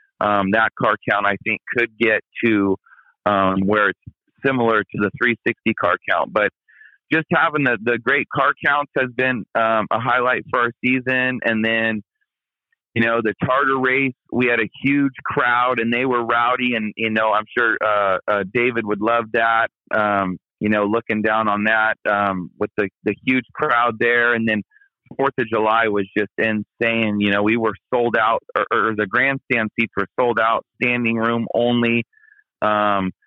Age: 30-49